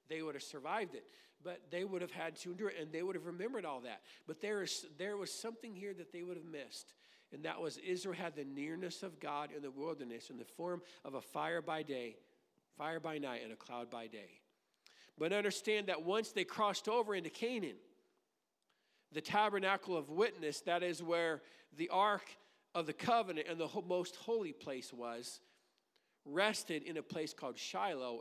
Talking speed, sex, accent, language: 195 wpm, male, American, English